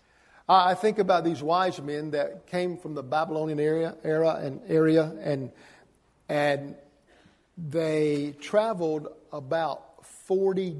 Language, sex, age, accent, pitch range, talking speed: English, male, 50-69, American, 150-190 Hz, 115 wpm